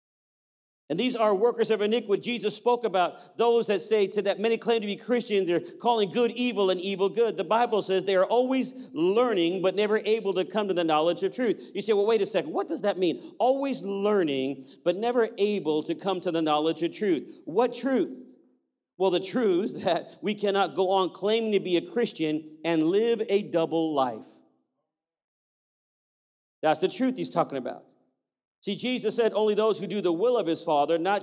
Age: 40-59